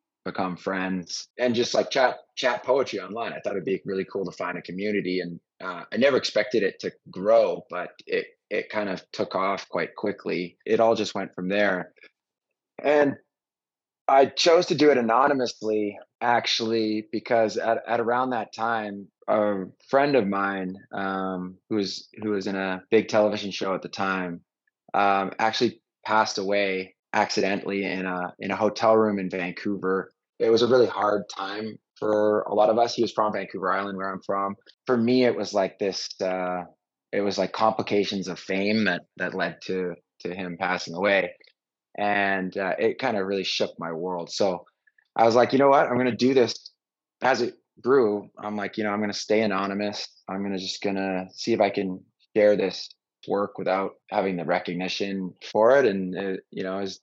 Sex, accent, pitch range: male, American, 95-110 Hz